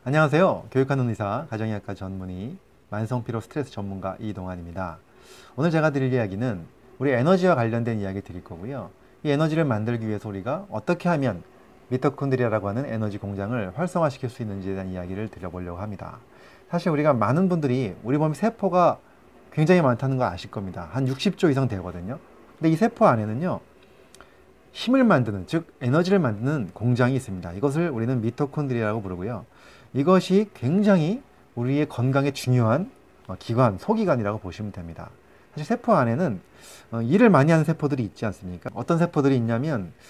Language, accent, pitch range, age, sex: Korean, native, 105-155 Hz, 30-49, male